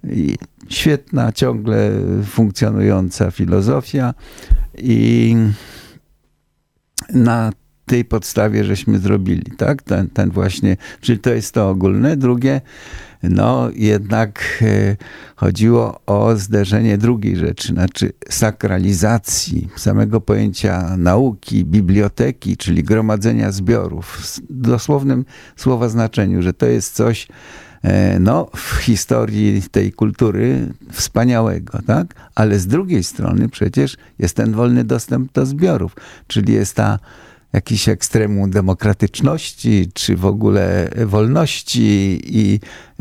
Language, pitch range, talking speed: Polish, 95-115 Hz, 105 wpm